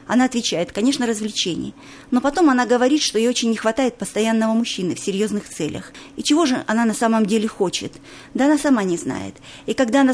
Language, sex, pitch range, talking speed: Russian, female, 210-255 Hz, 200 wpm